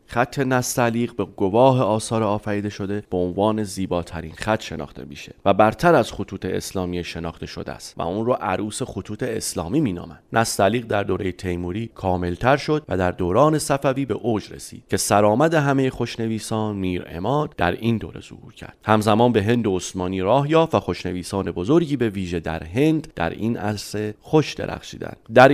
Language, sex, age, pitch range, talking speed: Persian, male, 30-49, 90-125 Hz, 165 wpm